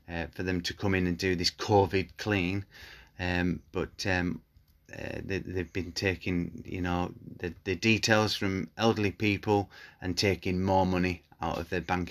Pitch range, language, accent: 85-100 Hz, English, British